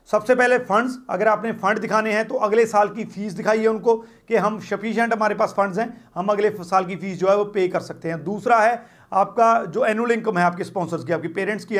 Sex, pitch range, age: male, 185-230 Hz, 40-59